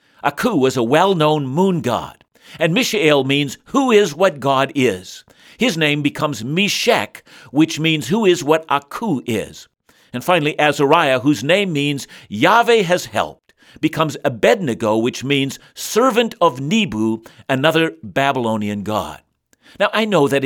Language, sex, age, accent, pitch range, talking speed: English, male, 60-79, American, 135-185 Hz, 140 wpm